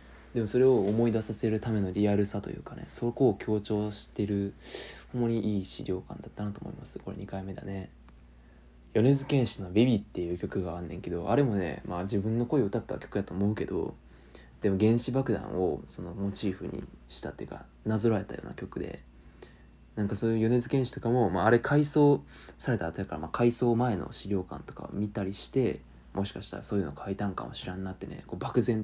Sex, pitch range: male, 80-115 Hz